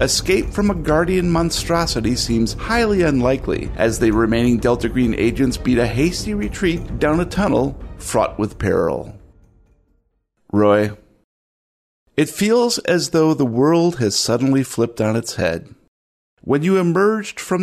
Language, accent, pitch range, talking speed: English, American, 110-170 Hz, 140 wpm